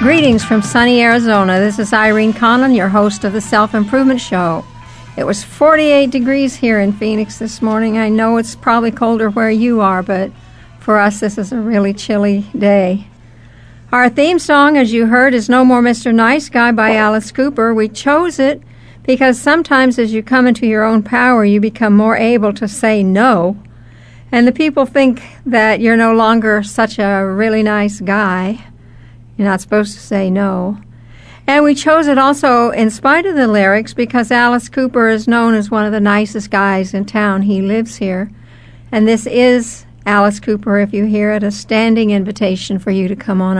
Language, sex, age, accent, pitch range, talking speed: English, female, 60-79, American, 200-240 Hz, 185 wpm